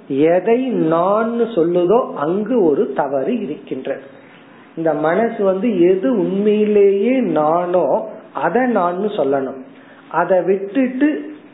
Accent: native